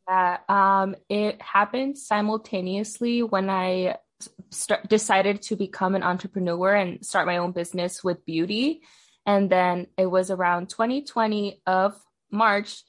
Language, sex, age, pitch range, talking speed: English, female, 20-39, 185-225 Hz, 125 wpm